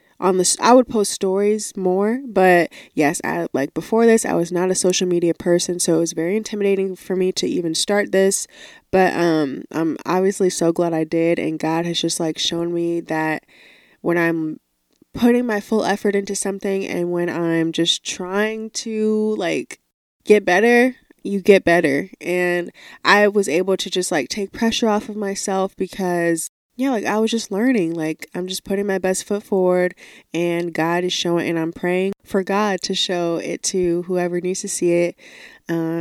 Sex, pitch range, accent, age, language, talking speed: female, 170-200 Hz, American, 20-39, English, 190 wpm